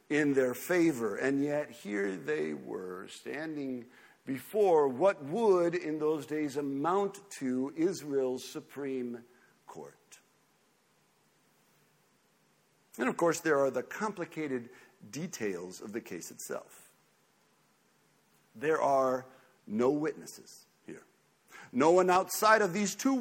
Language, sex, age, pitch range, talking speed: English, male, 50-69, 130-190 Hz, 110 wpm